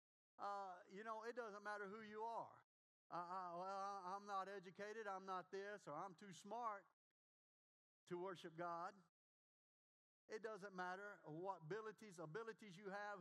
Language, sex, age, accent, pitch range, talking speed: English, male, 50-69, American, 165-205 Hz, 145 wpm